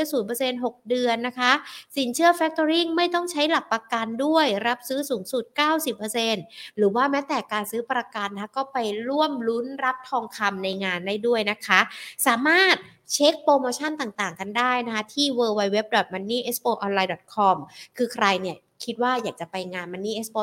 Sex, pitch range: female, 205-260 Hz